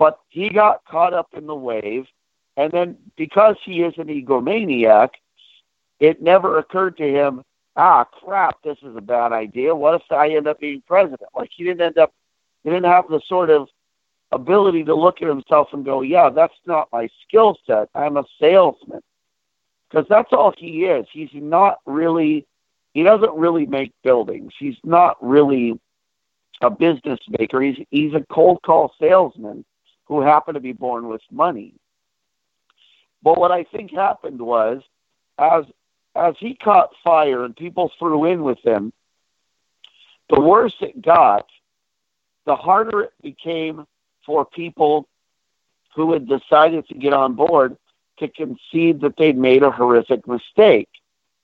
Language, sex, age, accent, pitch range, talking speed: English, male, 50-69, American, 140-175 Hz, 155 wpm